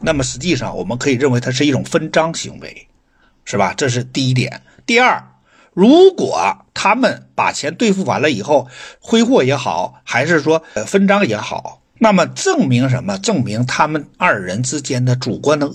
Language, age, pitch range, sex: Chinese, 60-79, 125-175 Hz, male